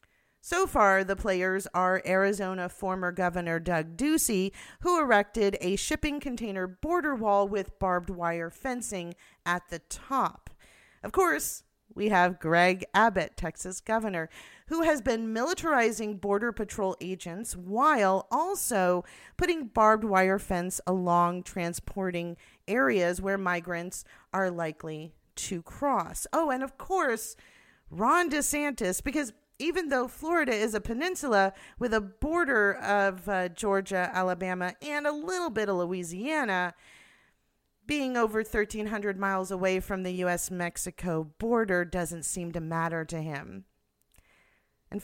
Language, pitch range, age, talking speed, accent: English, 185-260 Hz, 40-59, 130 wpm, American